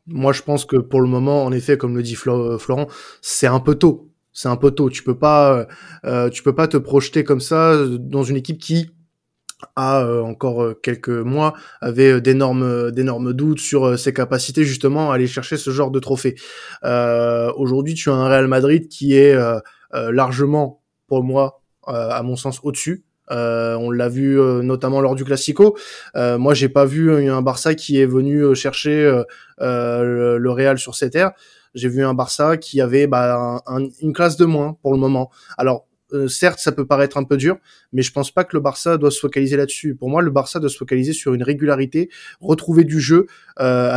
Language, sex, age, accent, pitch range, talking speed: French, male, 20-39, French, 125-150 Hz, 200 wpm